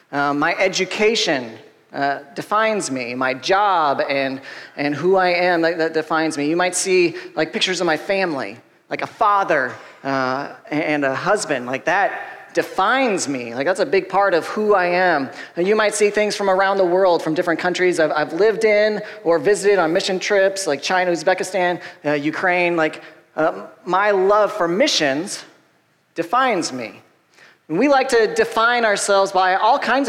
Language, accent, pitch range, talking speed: English, American, 165-210 Hz, 175 wpm